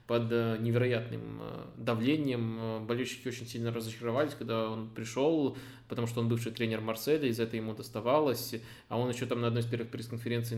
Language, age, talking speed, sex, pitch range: Russian, 20-39, 165 wpm, male, 115-125 Hz